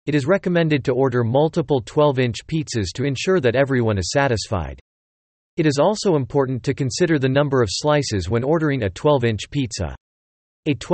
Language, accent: English, American